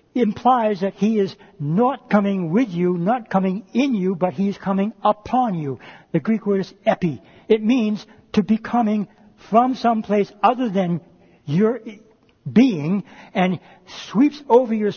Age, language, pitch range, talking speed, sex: 60-79, English, 170-225 Hz, 155 wpm, male